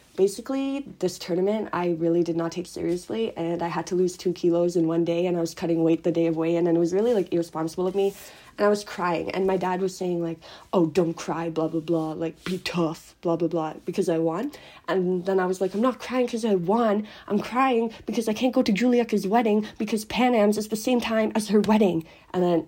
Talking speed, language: 245 wpm, English